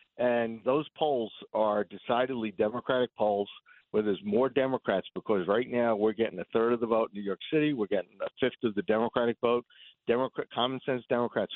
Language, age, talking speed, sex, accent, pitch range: English, 60-79, 190 wpm, male, American, 105-120 Hz